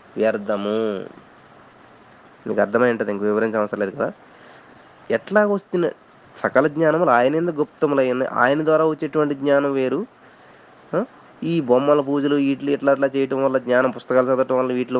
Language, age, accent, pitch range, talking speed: Telugu, 20-39, native, 115-150 Hz, 135 wpm